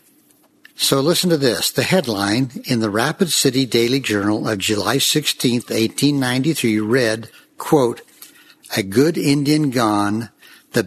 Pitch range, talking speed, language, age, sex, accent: 120-155 Hz, 125 wpm, English, 60-79, male, American